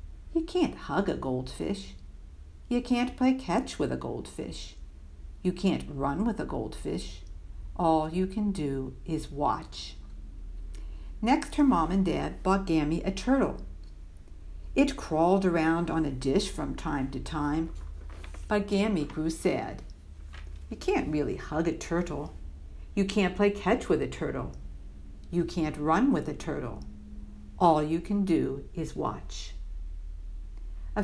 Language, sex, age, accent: Chinese, female, 50-69, American